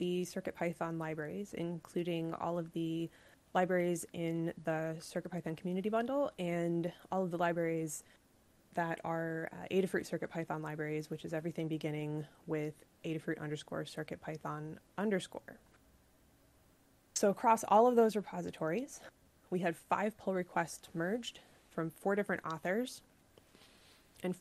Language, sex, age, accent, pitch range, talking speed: English, female, 20-39, American, 165-205 Hz, 120 wpm